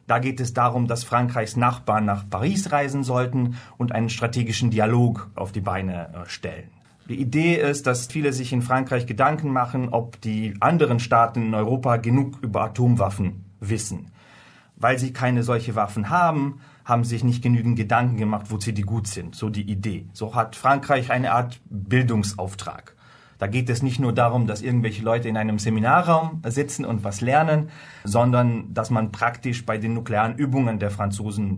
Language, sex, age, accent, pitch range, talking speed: German, male, 30-49, German, 105-125 Hz, 175 wpm